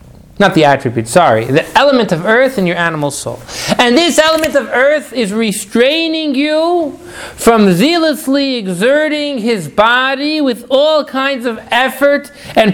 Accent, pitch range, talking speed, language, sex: American, 160-245 Hz, 145 wpm, English, male